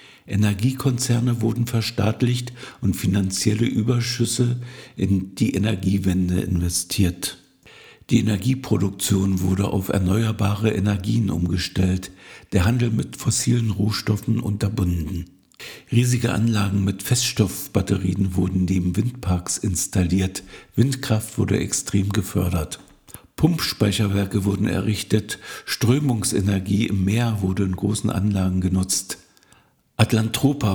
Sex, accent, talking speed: male, German, 90 wpm